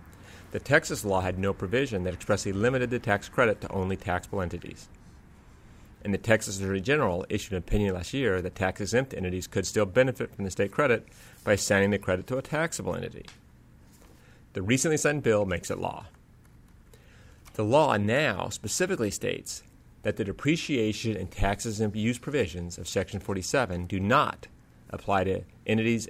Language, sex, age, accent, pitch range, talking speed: English, male, 30-49, American, 90-110 Hz, 165 wpm